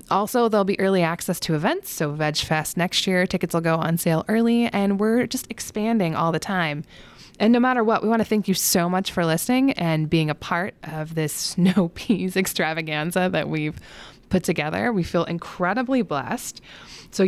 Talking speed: 190 wpm